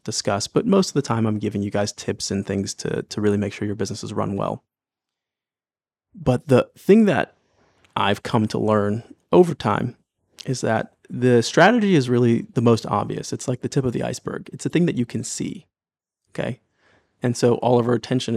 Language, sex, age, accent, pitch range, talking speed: English, male, 20-39, American, 110-125 Hz, 205 wpm